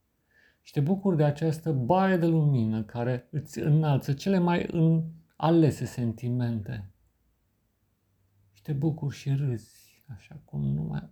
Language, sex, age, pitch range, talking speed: Romanian, male, 50-69, 110-150 Hz, 125 wpm